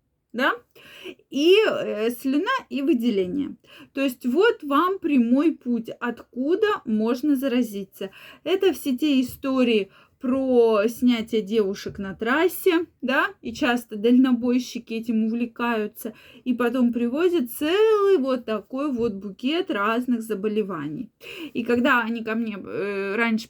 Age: 20-39